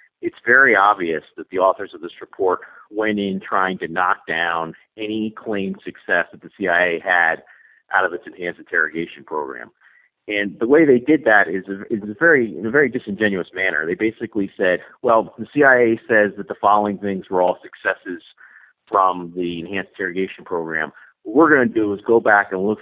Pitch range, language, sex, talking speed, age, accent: 95-120 Hz, English, male, 185 wpm, 50-69, American